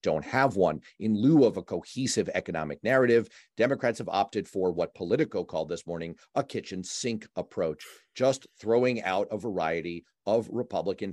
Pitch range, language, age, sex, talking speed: 100-130 Hz, English, 40-59, male, 160 wpm